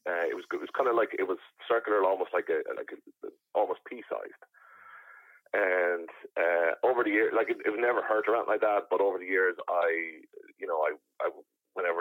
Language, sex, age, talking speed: English, male, 30-49, 205 wpm